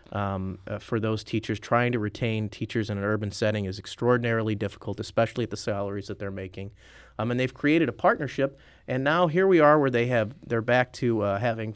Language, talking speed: English, 215 wpm